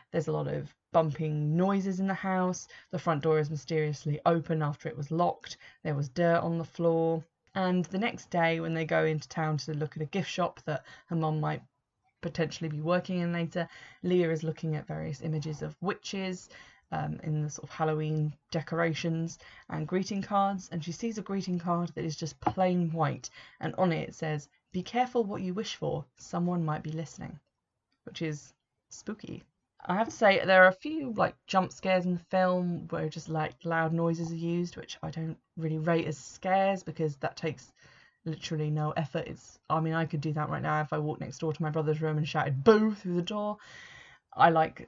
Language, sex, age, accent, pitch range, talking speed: English, female, 20-39, British, 155-180 Hz, 205 wpm